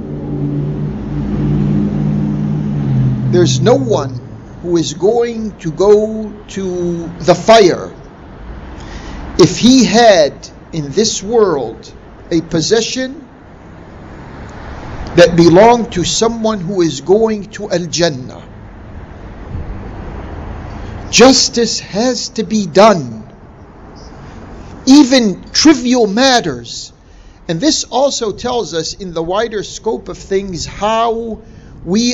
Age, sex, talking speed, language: 50-69, male, 90 wpm, English